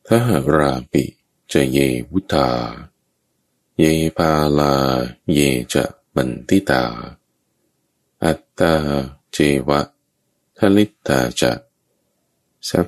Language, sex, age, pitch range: Thai, male, 20-39, 65-80 Hz